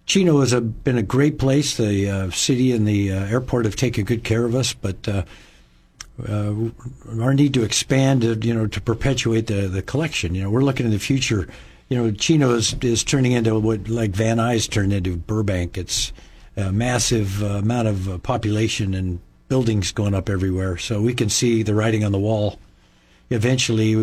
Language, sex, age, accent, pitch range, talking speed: English, male, 50-69, American, 105-120 Hz, 190 wpm